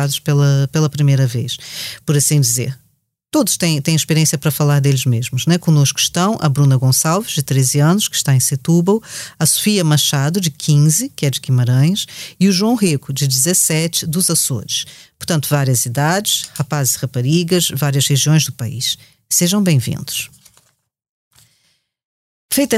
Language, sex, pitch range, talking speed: Portuguese, female, 145-190 Hz, 155 wpm